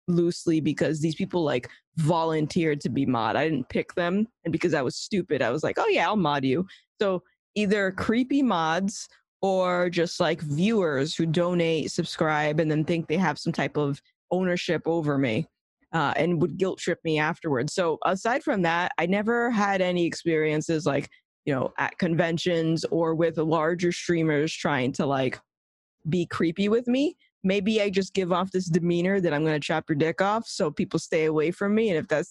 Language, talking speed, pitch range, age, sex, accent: English, 195 wpm, 155-200 Hz, 20-39, female, American